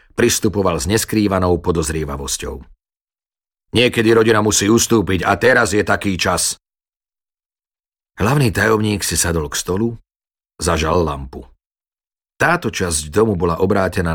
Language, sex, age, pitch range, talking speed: Slovak, male, 40-59, 85-110 Hz, 110 wpm